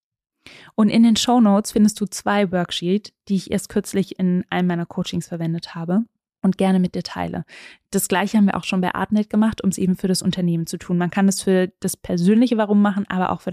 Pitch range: 185-215 Hz